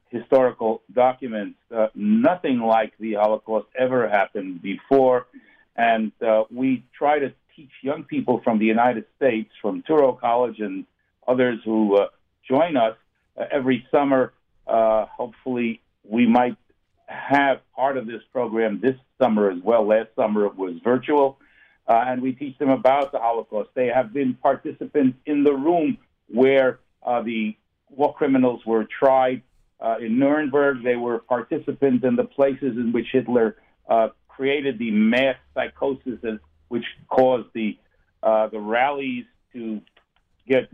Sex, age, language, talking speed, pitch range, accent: male, 60-79, English, 145 wpm, 110-135 Hz, American